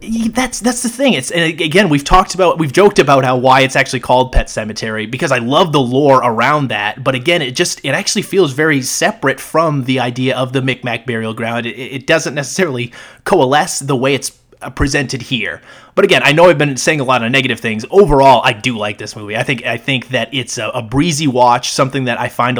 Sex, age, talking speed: male, 30-49, 225 wpm